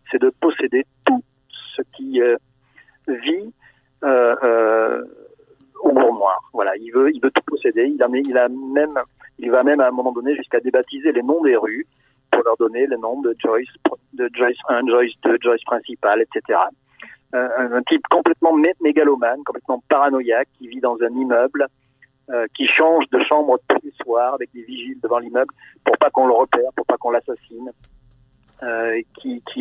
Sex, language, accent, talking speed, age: male, French, French, 180 wpm, 50-69